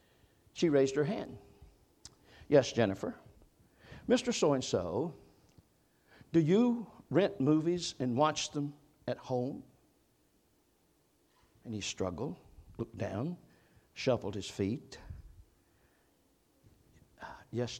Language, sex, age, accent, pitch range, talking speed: English, male, 60-79, American, 110-150 Hz, 95 wpm